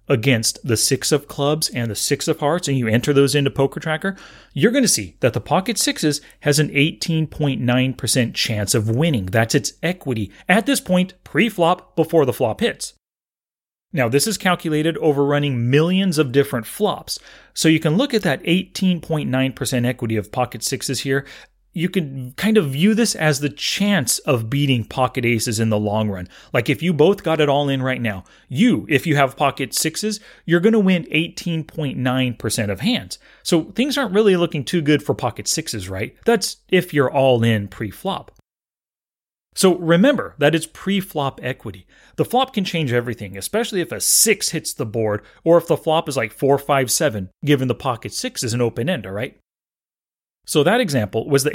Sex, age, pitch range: male, 30-49, 125-170 Hz